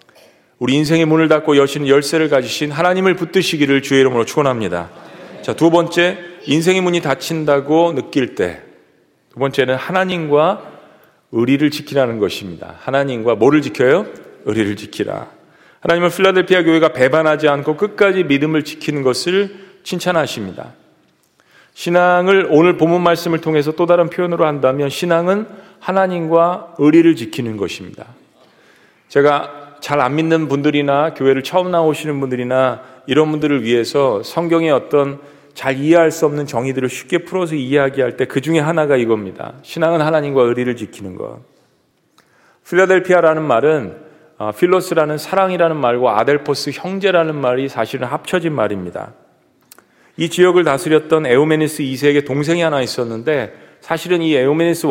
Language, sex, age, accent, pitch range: Korean, male, 40-59, native, 135-170 Hz